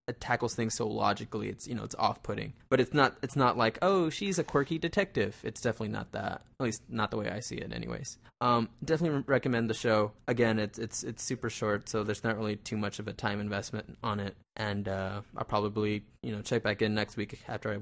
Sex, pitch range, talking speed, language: male, 105-120 Hz, 230 wpm, English